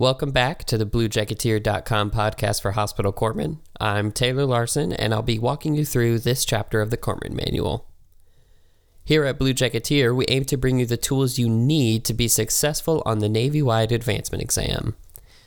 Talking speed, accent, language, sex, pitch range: 175 wpm, American, English, male, 105-125 Hz